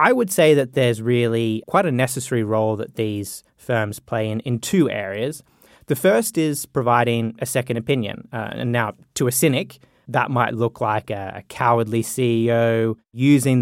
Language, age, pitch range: English, 20-39, 115-130 Hz